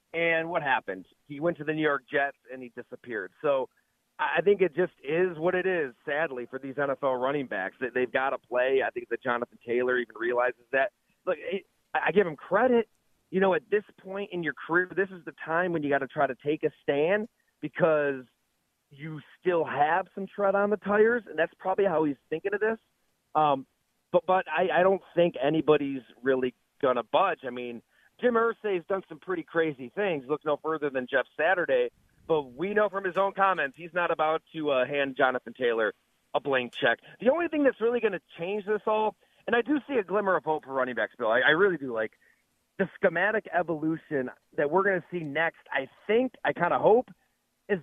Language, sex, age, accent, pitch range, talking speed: English, male, 40-59, American, 145-195 Hz, 215 wpm